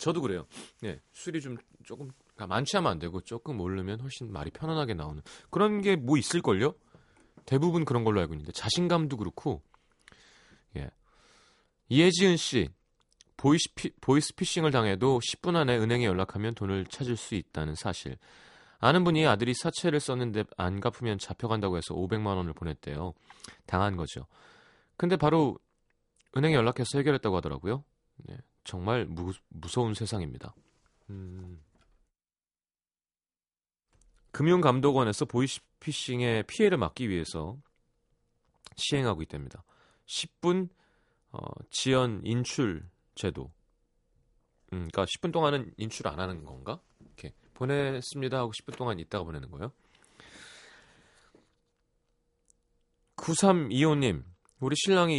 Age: 30-49